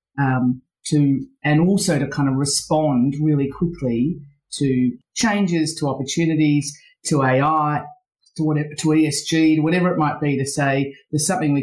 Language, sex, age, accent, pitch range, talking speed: English, female, 40-59, Australian, 130-155 Hz, 150 wpm